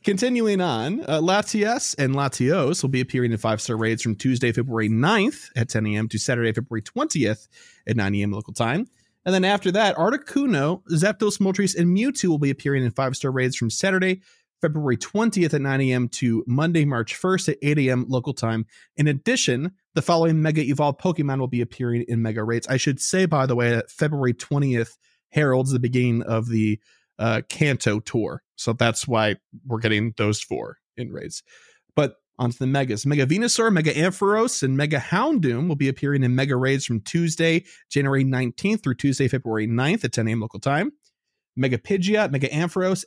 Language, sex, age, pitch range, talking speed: English, male, 30-49, 120-175 Hz, 185 wpm